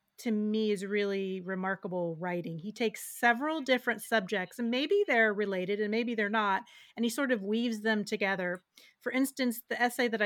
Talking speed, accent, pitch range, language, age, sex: 180 wpm, American, 200-250 Hz, English, 30-49, female